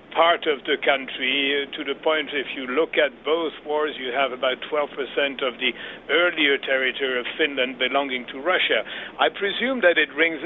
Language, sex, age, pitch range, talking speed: English, male, 60-79, 135-175 Hz, 180 wpm